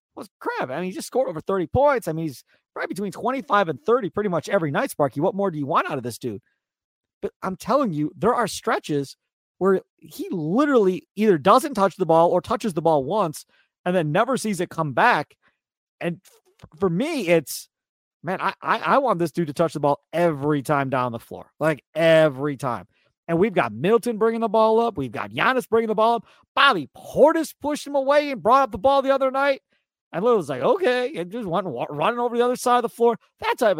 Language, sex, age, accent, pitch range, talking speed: English, male, 40-59, American, 150-225 Hz, 225 wpm